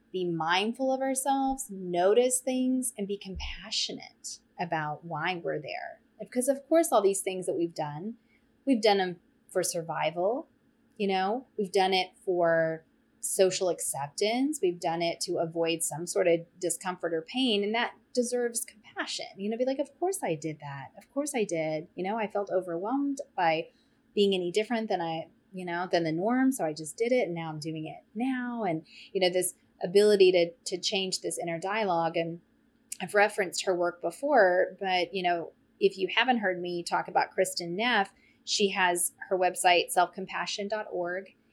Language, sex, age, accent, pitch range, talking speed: English, female, 30-49, American, 175-240 Hz, 180 wpm